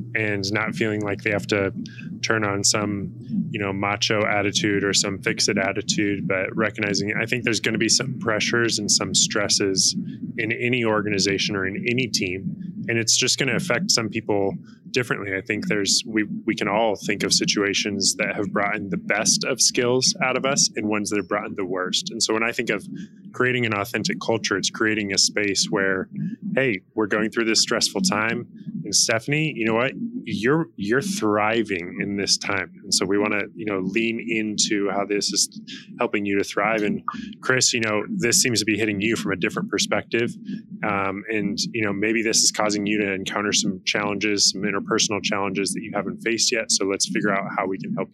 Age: 20-39